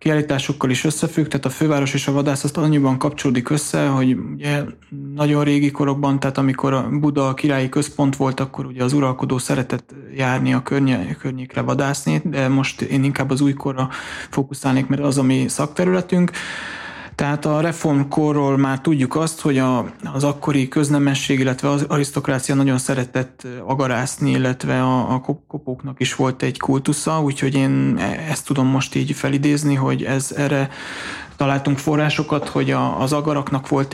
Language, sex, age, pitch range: Hungarian, male, 20-39, 135-145 Hz